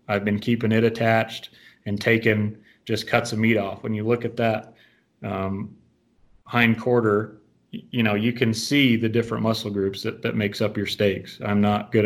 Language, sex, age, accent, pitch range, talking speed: English, male, 30-49, American, 105-115 Hz, 190 wpm